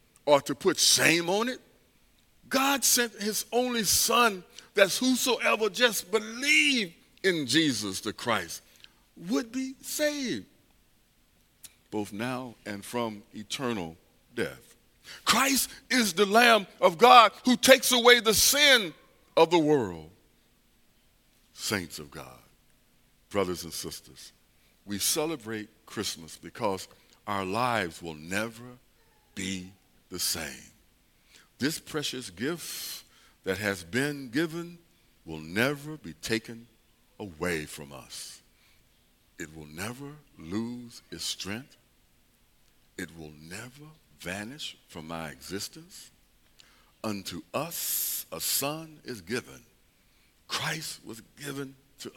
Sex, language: male, English